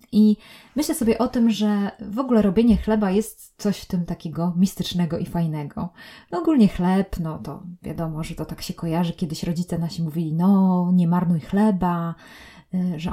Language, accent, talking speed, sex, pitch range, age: Polish, native, 170 wpm, female, 170-210 Hz, 20-39